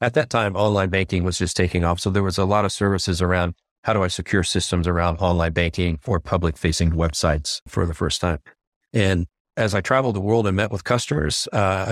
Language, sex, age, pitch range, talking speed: English, male, 40-59, 90-110 Hz, 215 wpm